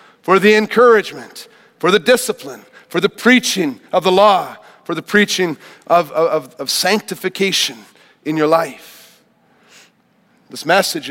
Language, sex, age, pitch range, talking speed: English, male, 40-59, 180-235 Hz, 130 wpm